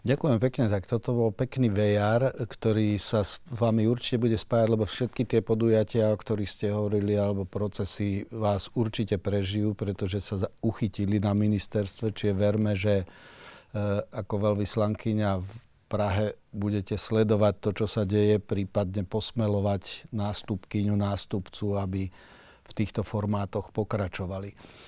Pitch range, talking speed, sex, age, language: 100-115 Hz, 135 wpm, male, 40-59, Slovak